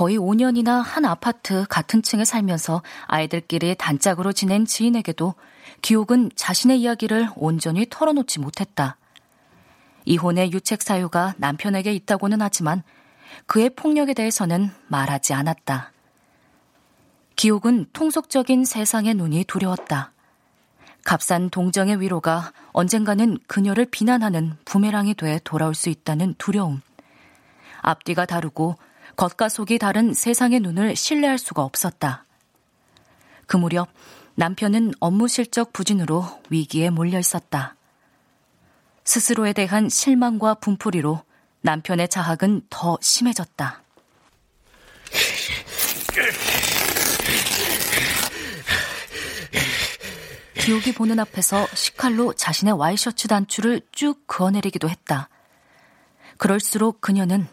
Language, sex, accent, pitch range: Korean, female, native, 170-225 Hz